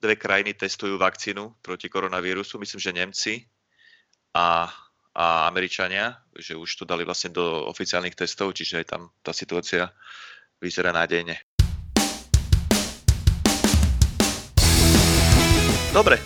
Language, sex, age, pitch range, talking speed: Slovak, male, 30-49, 90-105 Hz, 105 wpm